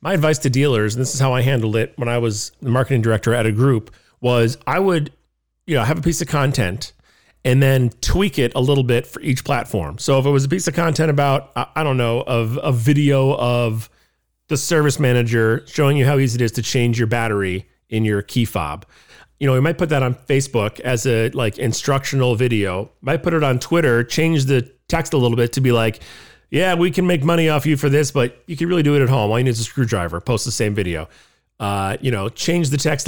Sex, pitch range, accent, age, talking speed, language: male, 115-150 Hz, American, 40-59, 240 wpm, English